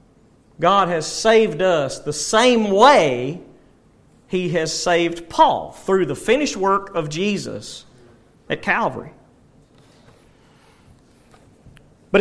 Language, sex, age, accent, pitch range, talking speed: English, male, 40-59, American, 165-225 Hz, 100 wpm